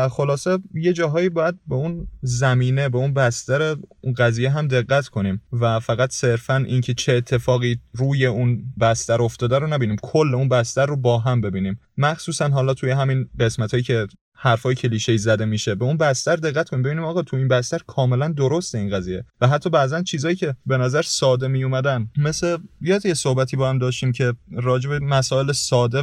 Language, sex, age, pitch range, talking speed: Persian, male, 30-49, 120-155 Hz, 185 wpm